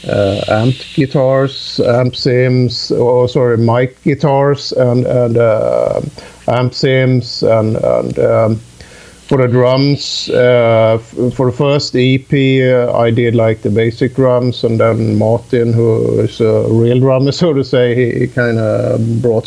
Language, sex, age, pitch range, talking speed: English, male, 50-69, 110-125 Hz, 155 wpm